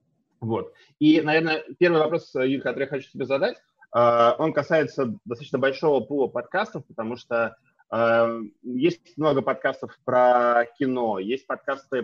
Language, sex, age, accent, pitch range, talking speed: Russian, male, 20-39, native, 115-140 Hz, 130 wpm